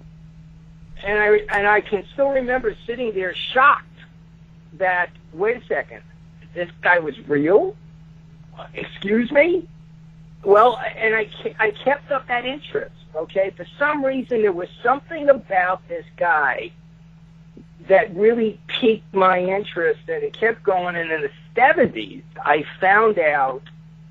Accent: American